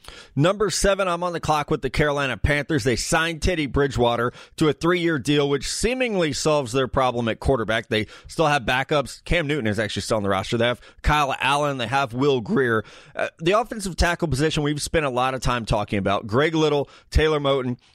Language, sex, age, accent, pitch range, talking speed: English, male, 30-49, American, 125-150 Hz, 205 wpm